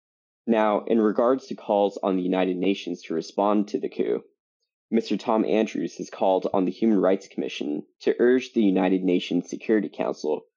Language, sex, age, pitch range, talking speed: English, male, 20-39, 95-120 Hz, 175 wpm